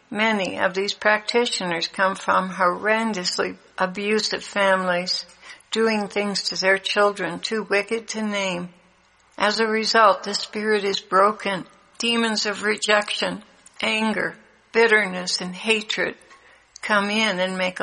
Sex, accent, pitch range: female, American, 195-215 Hz